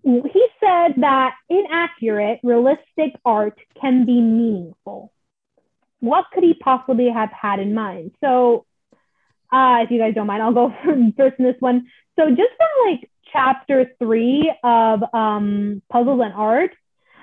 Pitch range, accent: 235-300 Hz, American